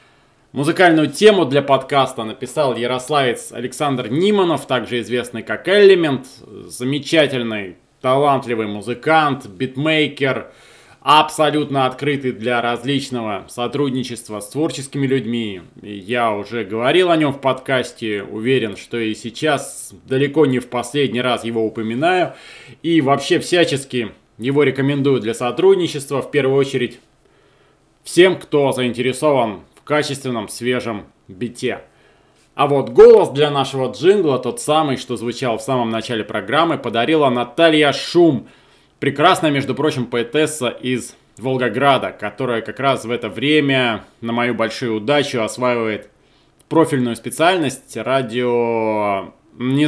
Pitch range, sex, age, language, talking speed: 115-145 Hz, male, 20-39, Russian, 115 wpm